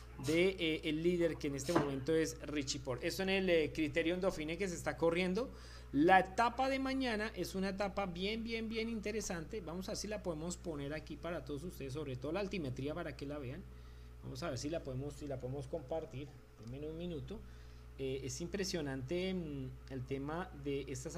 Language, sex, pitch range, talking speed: Spanish, male, 145-210 Hz, 205 wpm